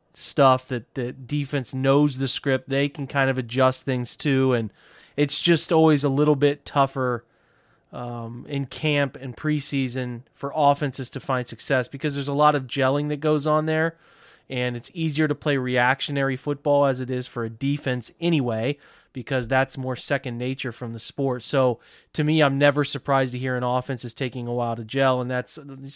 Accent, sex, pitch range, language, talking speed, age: American, male, 120-140 Hz, English, 190 wpm, 30-49